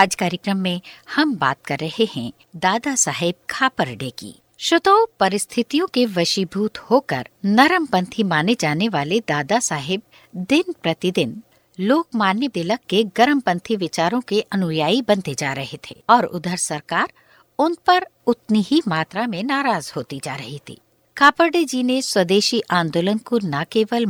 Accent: native